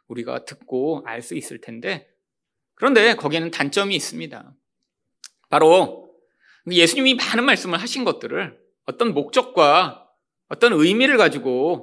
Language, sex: Korean, male